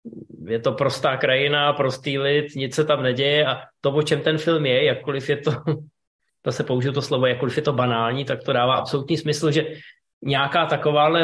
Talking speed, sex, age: 190 wpm, male, 20-39